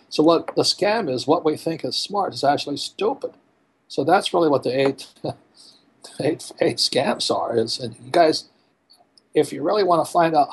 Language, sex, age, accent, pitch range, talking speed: English, male, 60-79, American, 125-150 Hz, 180 wpm